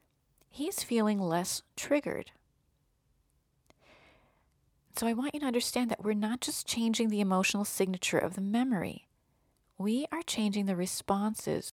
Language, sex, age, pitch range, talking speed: English, female, 40-59, 185-240 Hz, 130 wpm